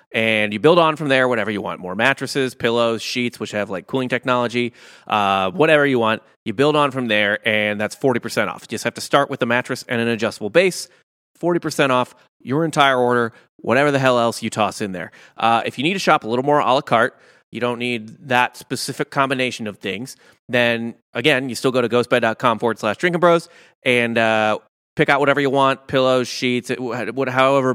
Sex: male